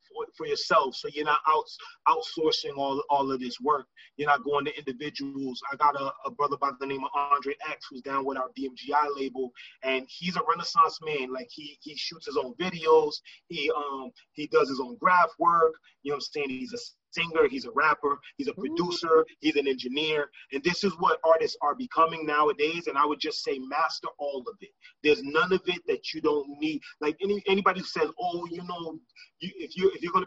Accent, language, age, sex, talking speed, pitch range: American, English, 30-49, male, 225 wpm, 145-230 Hz